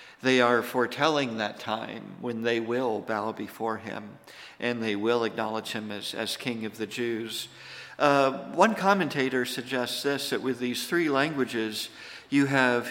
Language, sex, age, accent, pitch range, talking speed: English, male, 50-69, American, 110-125 Hz, 160 wpm